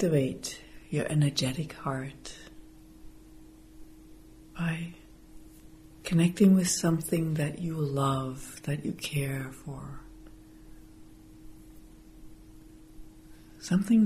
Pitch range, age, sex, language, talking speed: 135-160 Hz, 60-79, female, English, 65 wpm